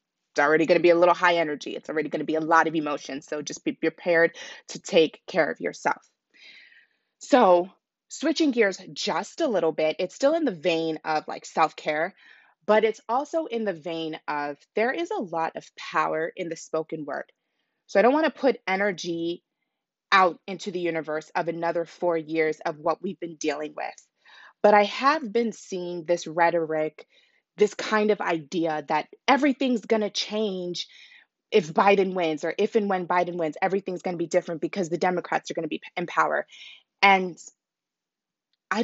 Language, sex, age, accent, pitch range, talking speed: English, female, 20-39, American, 165-210 Hz, 185 wpm